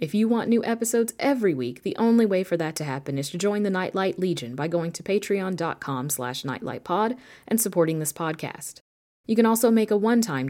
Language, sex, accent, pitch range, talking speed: English, female, American, 140-205 Hz, 200 wpm